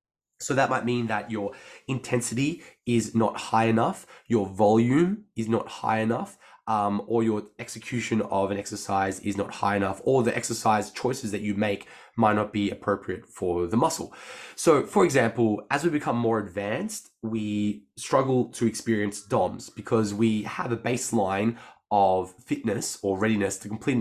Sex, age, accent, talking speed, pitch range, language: male, 20-39, Australian, 165 wpm, 105-120 Hz, English